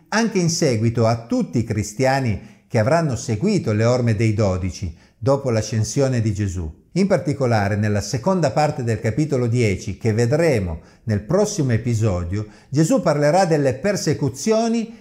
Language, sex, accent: Italian, male, native